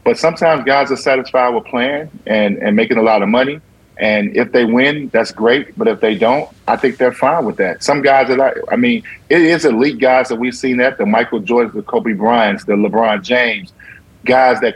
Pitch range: 125-150 Hz